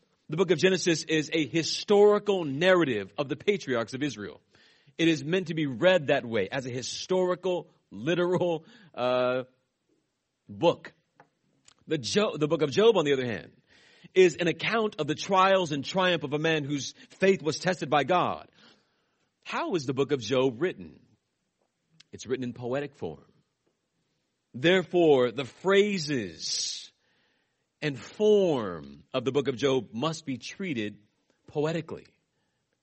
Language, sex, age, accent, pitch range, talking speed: English, male, 40-59, American, 130-180 Hz, 145 wpm